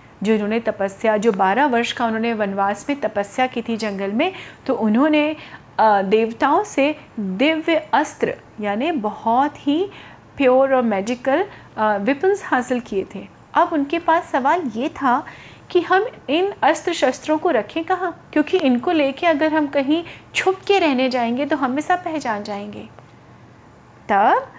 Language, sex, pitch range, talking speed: Hindi, female, 225-315 Hz, 145 wpm